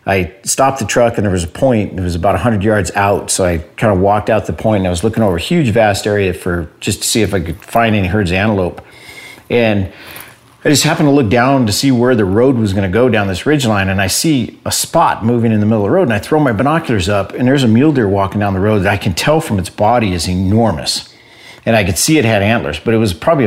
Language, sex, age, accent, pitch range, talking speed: English, male, 50-69, American, 100-120 Hz, 285 wpm